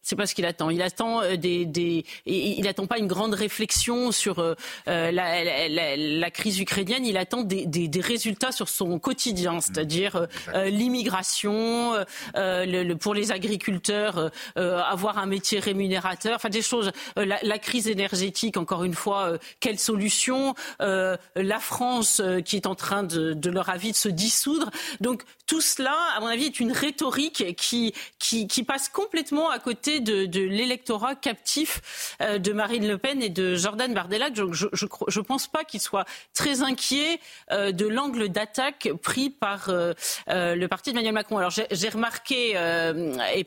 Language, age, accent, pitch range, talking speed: French, 40-59, French, 185-240 Hz, 175 wpm